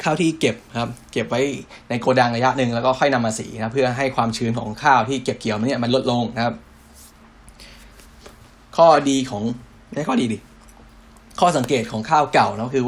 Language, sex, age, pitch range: Thai, male, 10-29, 115-135 Hz